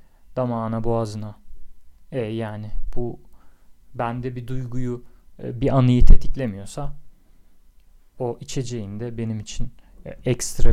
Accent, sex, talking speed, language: native, male, 95 wpm, Turkish